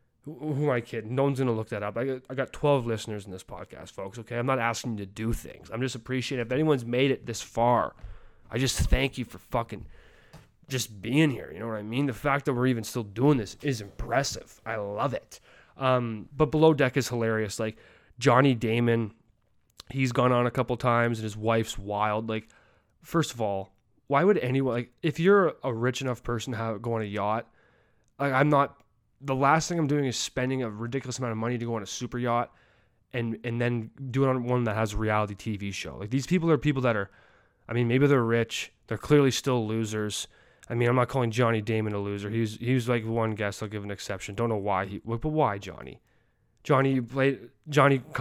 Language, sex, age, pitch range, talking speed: English, male, 20-39, 110-135 Hz, 225 wpm